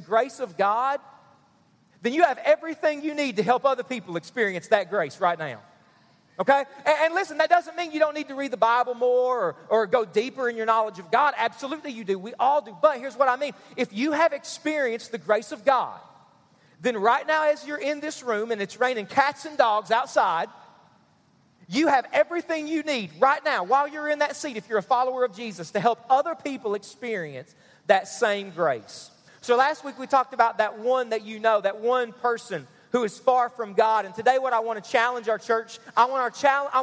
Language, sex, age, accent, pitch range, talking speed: English, male, 40-59, American, 220-280 Hz, 220 wpm